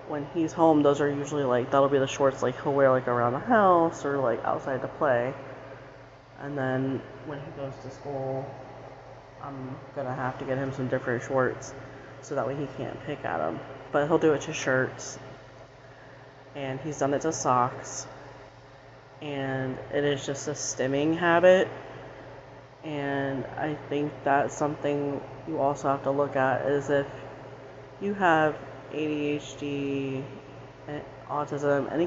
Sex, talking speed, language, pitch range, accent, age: female, 160 wpm, English, 135-145 Hz, American, 30-49